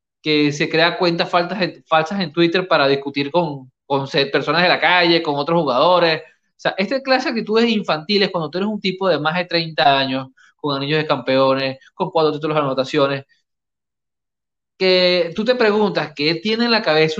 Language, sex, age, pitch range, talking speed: Spanish, male, 20-39, 155-210 Hz, 185 wpm